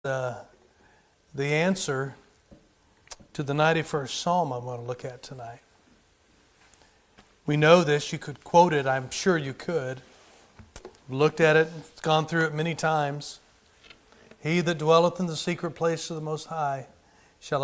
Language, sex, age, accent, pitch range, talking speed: English, male, 40-59, American, 150-185 Hz, 150 wpm